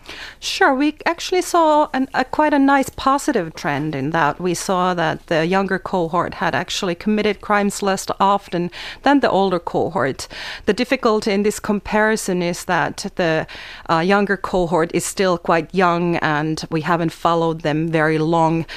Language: Finnish